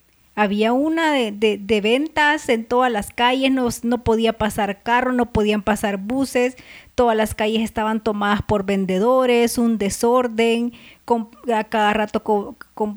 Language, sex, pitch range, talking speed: Spanish, female, 200-240 Hz, 135 wpm